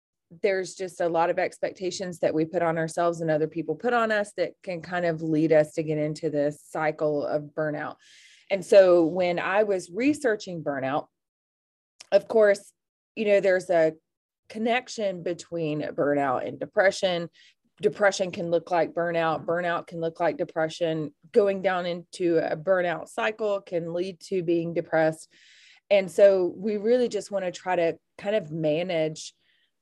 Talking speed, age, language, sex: 165 wpm, 20-39, English, female